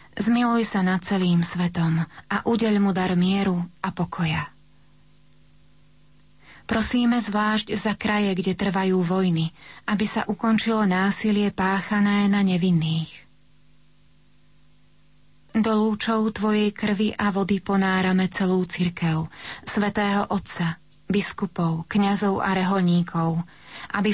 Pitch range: 180-215 Hz